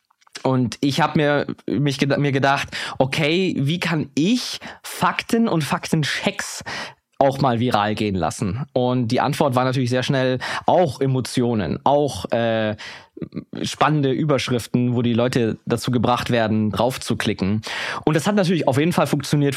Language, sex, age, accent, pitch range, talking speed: German, male, 20-39, German, 125-150 Hz, 145 wpm